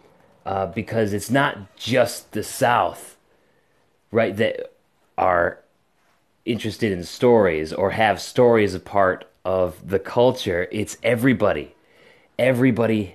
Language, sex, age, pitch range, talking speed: English, male, 30-49, 95-130 Hz, 110 wpm